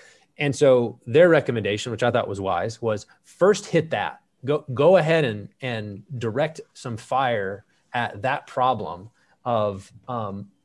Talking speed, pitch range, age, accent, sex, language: 145 wpm, 110-140 Hz, 30-49, American, male, English